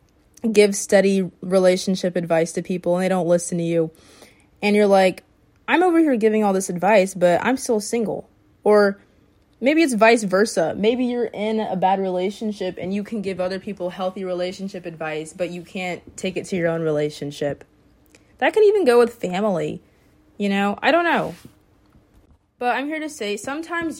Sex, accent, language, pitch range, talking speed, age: female, American, English, 185-230 Hz, 180 wpm, 20-39